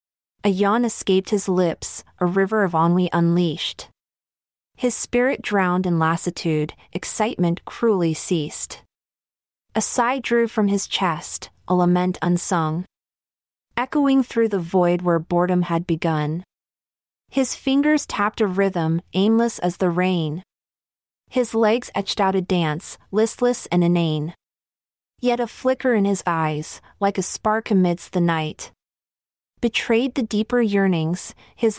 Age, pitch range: 30-49, 170-225 Hz